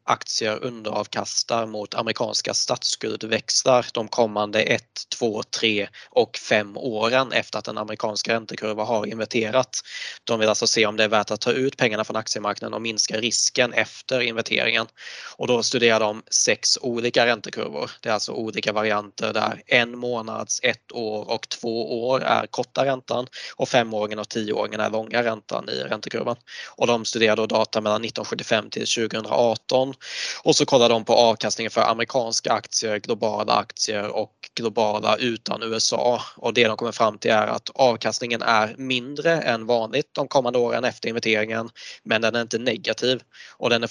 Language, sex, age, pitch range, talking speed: Swedish, male, 20-39, 110-120 Hz, 165 wpm